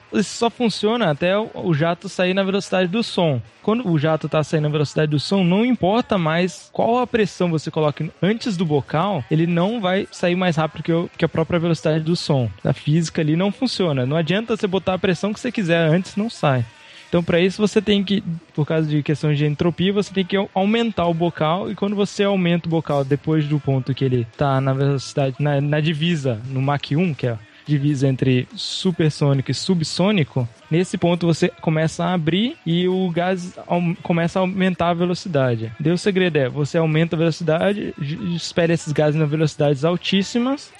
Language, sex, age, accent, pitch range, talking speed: Portuguese, male, 20-39, Brazilian, 155-195 Hz, 195 wpm